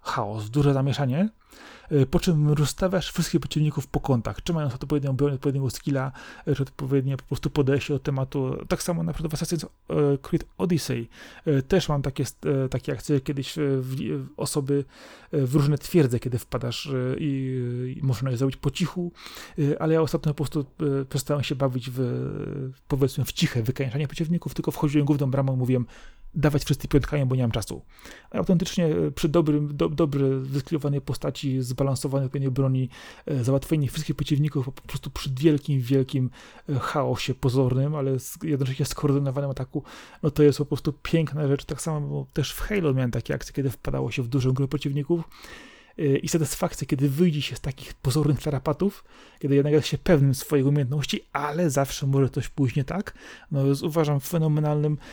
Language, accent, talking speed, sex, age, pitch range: Polish, native, 165 wpm, male, 30-49, 135-155 Hz